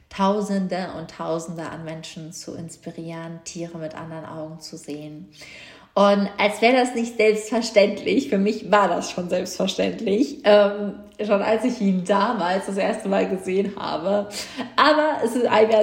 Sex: female